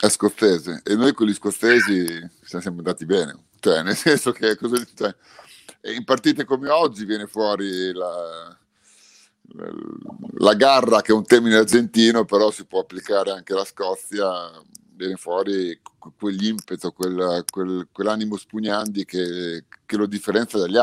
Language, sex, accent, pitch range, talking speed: Italian, male, native, 95-115 Hz, 140 wpm